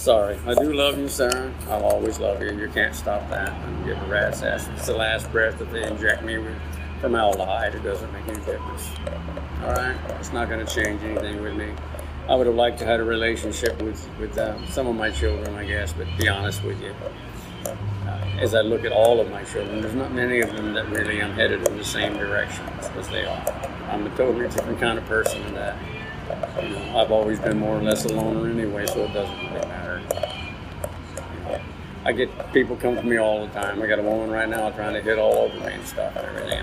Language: English